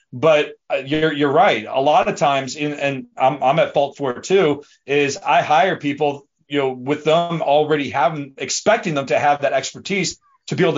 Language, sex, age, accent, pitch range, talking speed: English, male, 30-49, American, 145-195 Hz, 200 wpm